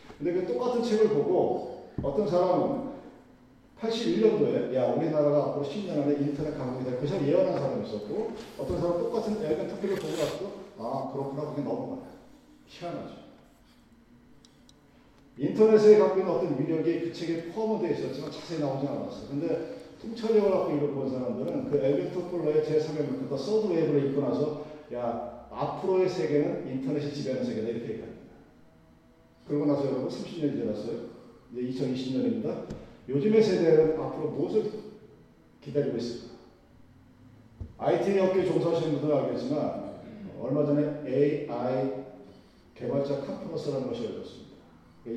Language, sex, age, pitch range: Korean, male, 40-59, 130-180 Hz